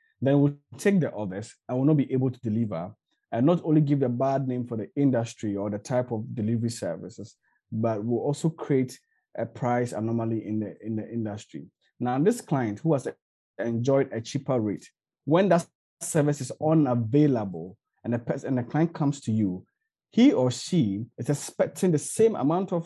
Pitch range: 120-160 Hz